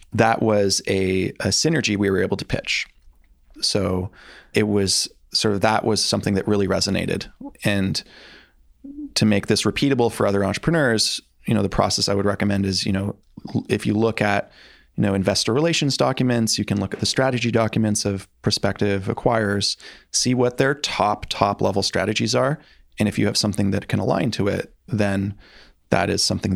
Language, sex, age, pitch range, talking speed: English, male, 20-39, 95-110 Hz, 180 wpm